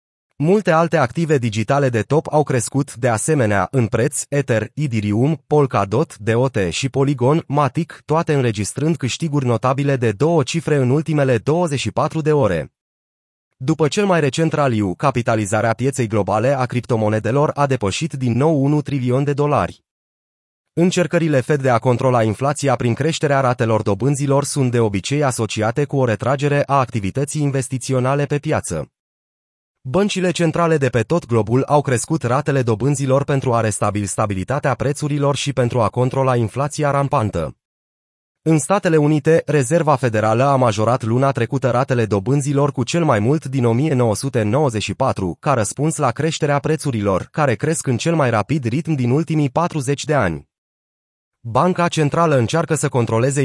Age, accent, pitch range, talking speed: 30-49, native, 120-150 Hz, 145 wpm